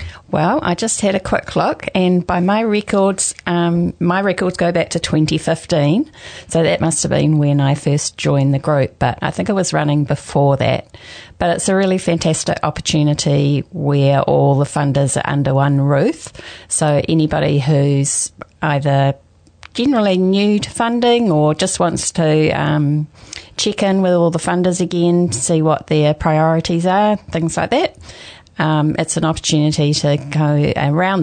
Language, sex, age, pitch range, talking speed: English, female, 40-59, 140-170 Hz, 165 wpm